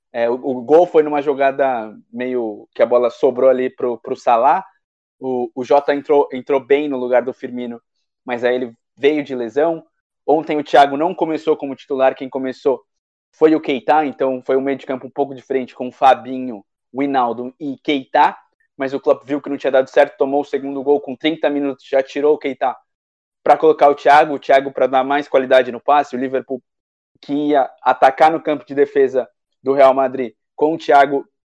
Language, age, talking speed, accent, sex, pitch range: Portuguese, 20-39, 210 wpm, Brazilian, male, 130-155 Hz